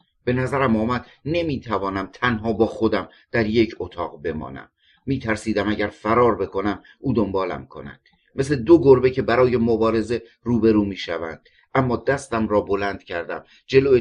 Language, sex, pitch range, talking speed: Persian, male, 110-140 Hz, 140 wpm